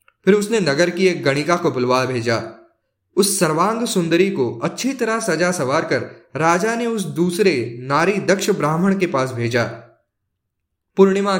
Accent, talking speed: native, 155 wpm